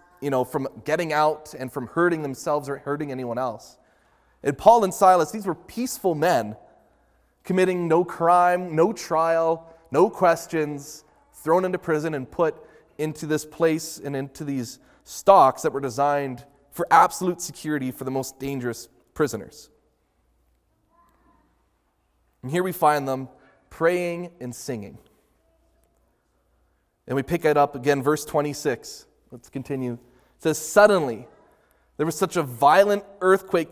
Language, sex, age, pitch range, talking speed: English, male, 20-39, 145-180 Hz, 135 wpm